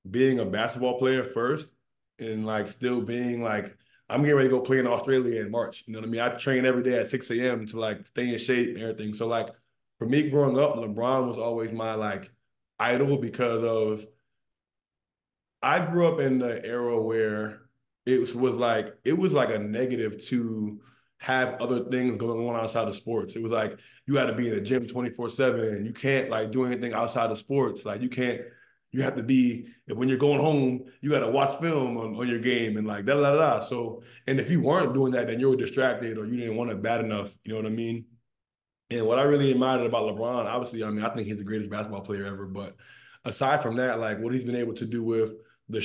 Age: 20-39